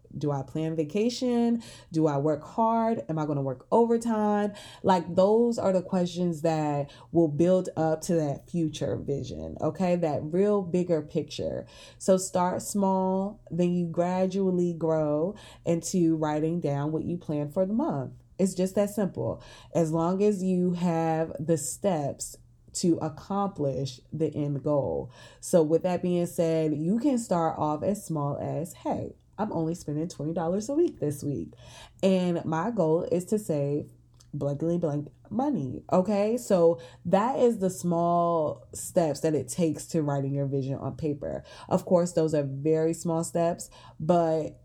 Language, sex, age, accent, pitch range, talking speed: English, female, 20-39, American, 150-185 Hz, 160 wpm